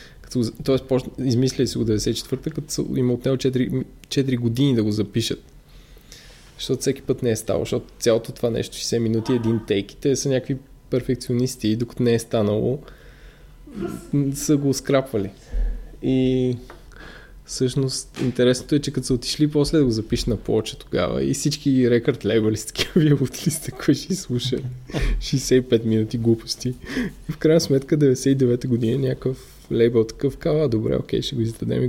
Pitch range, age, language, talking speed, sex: 115-140 Hz, 20-39, Bulgarian, 160 wpm, male